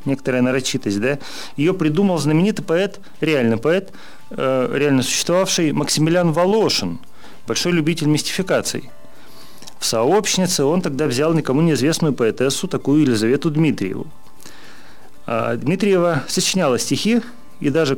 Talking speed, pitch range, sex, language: 110 wpm, 130-180 Hz, male, Russian